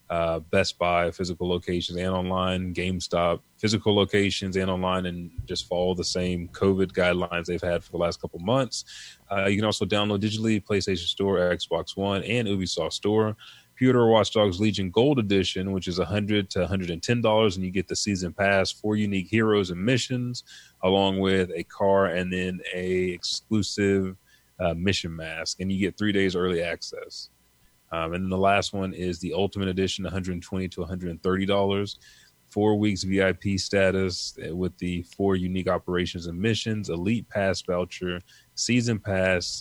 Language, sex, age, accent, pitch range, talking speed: English, male, 30-49, American, 90-105 Hz, 165 wpm